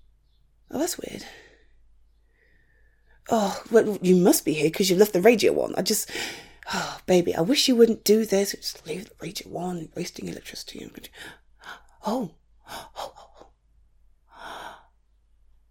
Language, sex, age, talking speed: English, female, 30-49, 140 wpm